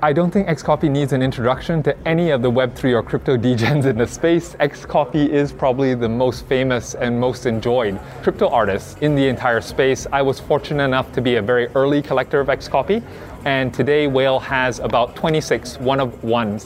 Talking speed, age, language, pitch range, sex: 185 wpm, 20-39, English, 125-150 Hz, male